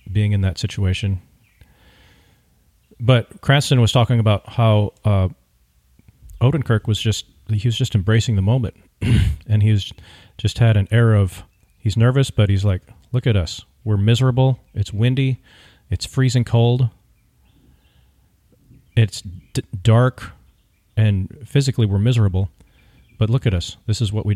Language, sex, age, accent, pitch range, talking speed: English, male, 40-59, American, 95-115 Hz, 140 wpm